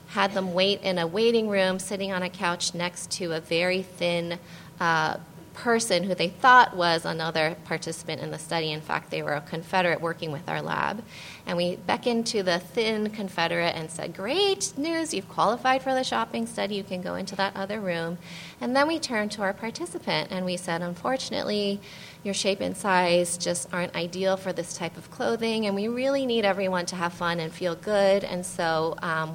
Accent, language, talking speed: American, English, 200 wpm